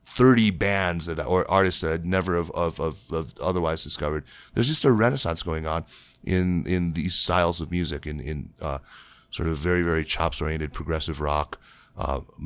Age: 30-49